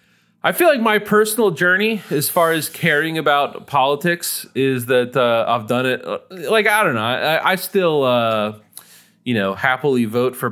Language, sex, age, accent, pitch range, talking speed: English, male, 30-49, American, 105-150 Hz, 175 wpm